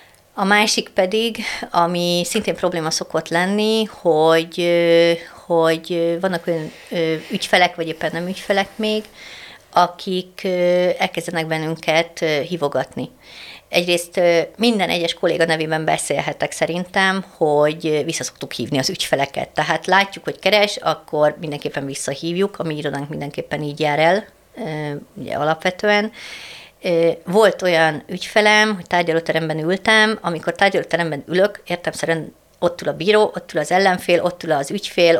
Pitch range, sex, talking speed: 155-185 Hz, female, 125 wpm